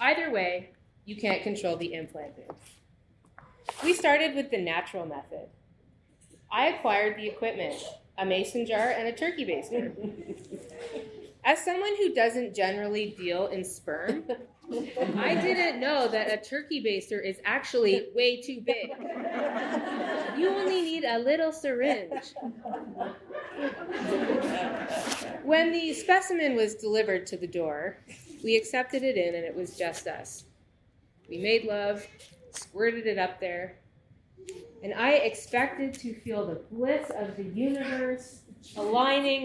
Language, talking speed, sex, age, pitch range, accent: English, 130 wpm, female, 20-39, 205-285 Hz, American